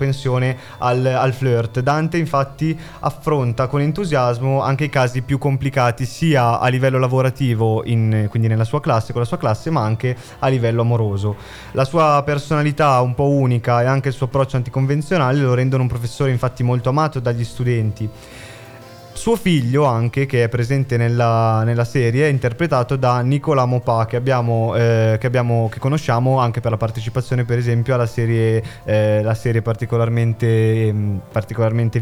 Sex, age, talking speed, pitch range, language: male, 20-39, 160 wpm, 115-135 Hz, Italian